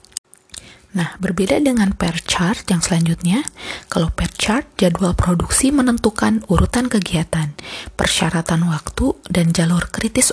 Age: 20-39